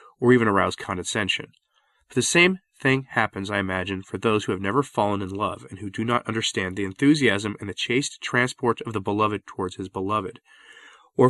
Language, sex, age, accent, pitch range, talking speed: English, male, 30-49, American, 100-135 Hz, 195 wpm